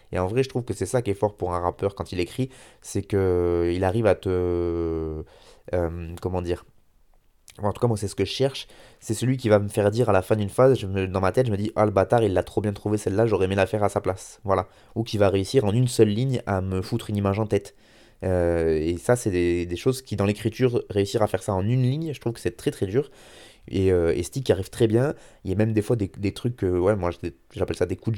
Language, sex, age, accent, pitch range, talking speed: French, male, 20-39, French, 90-120 Hz, 295 wpm